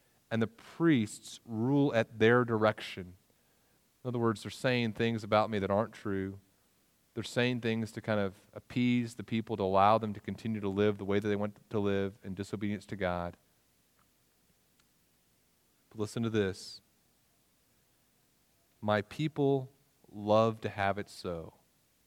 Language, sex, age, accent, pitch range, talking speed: English, male, 30-49, American, 90-110 Hz, 150 wpm